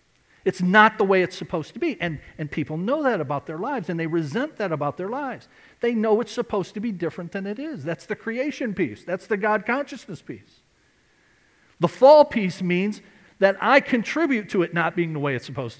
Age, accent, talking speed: 50-69, American, 215 wpm